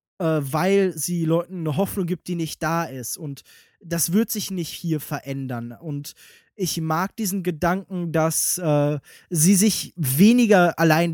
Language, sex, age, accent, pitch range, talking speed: German, male, 20-39, German, 155-190 Hz, 155 wpm